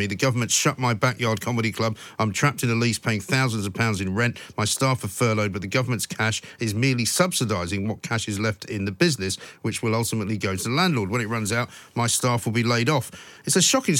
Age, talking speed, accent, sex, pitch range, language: 50-69, 240 wpm, British, male, 105-135 Hz, English